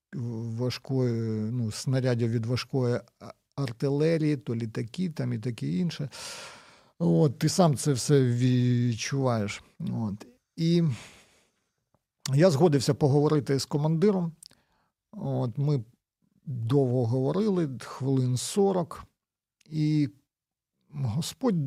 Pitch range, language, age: 120-155 Hz, Ukrainian, 50-69